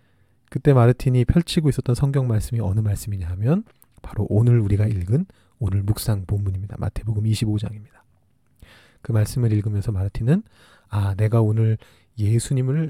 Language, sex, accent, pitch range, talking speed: English, male, Korean, 105-135 Hz, 120 wpm